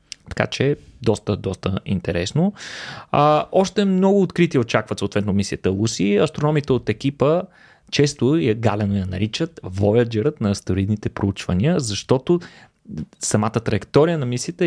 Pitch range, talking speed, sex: 110-150 Hz, 125 wpm, male